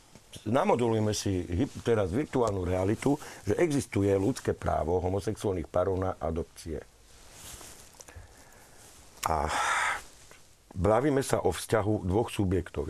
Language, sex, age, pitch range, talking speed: Slovak, male, 50-69, 85-115 Hz, 90 wpm